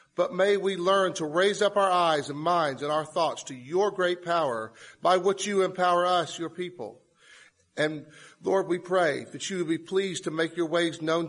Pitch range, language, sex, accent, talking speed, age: 155-190 Hz, English, male, American, 205 wpm, 40-59